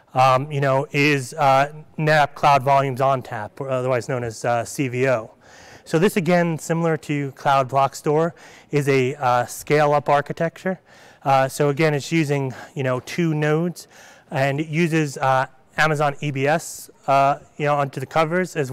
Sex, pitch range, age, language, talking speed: male, 135-155 Hz, 30-49, English, 165 wpm